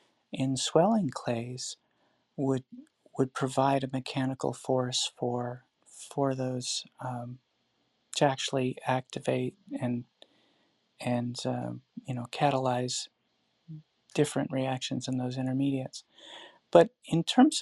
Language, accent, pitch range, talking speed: English, American, 125-145 Hz, 100 wpm